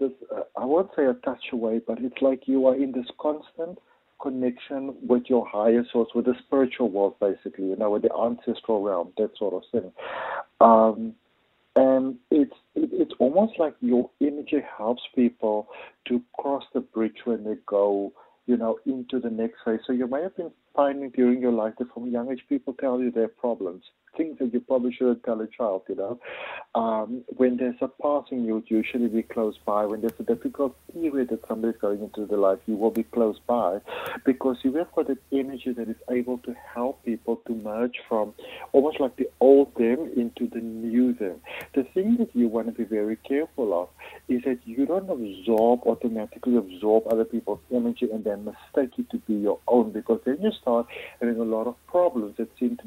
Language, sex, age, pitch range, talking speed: English, male, 50-69, 115-130 Hz, 205 wpm